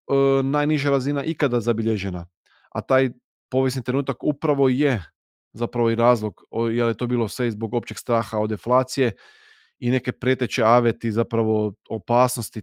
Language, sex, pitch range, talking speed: Croatian, male, 115-130 Hz, 140 wpm